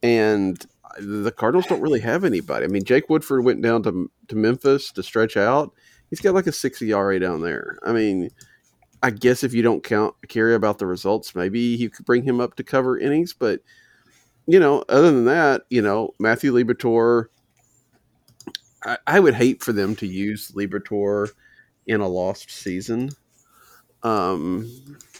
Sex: male